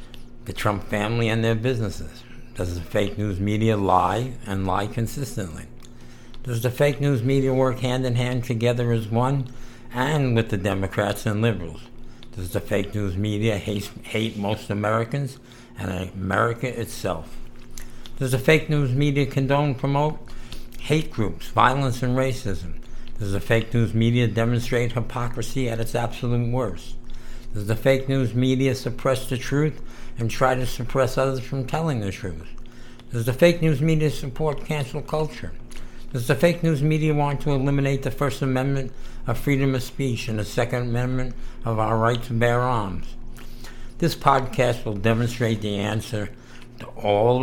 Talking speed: 160 wpm